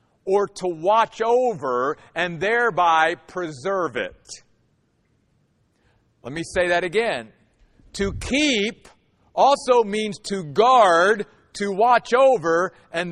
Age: 50-69